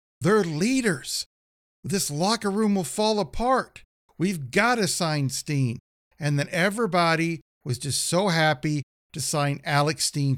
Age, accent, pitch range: 50-69, American, 140-185 Hz